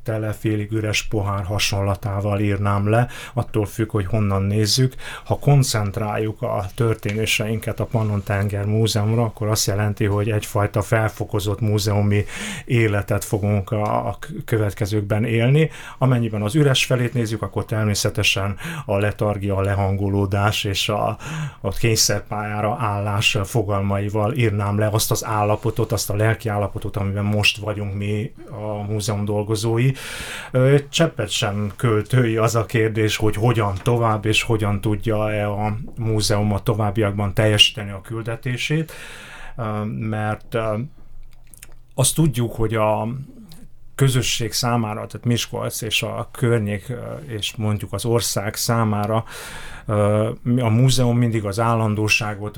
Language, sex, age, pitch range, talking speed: Hungarian, male, 30-49, 105-120 Hz, 120 wpm